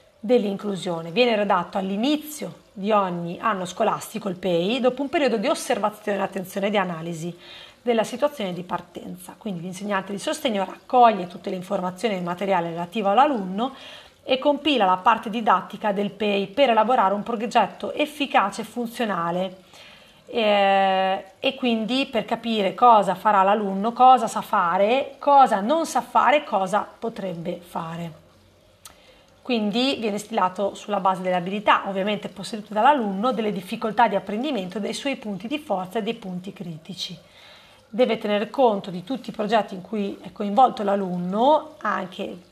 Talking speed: 145 wpm